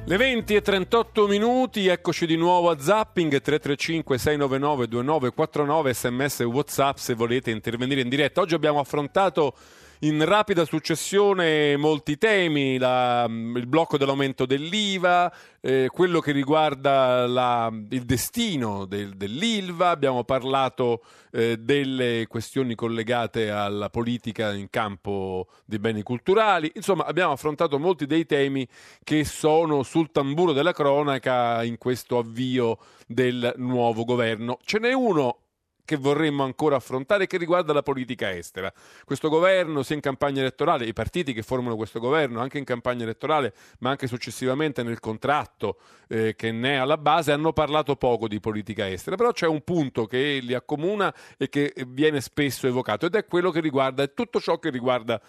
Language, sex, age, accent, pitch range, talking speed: Italian, male, 40-59, native, 125-165 Hz, 150 wpm